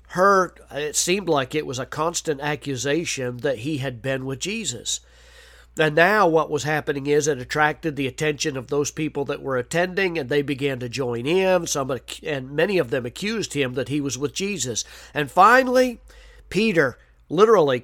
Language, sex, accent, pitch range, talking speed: English, male, American, 130-155 Hz, 180 wpm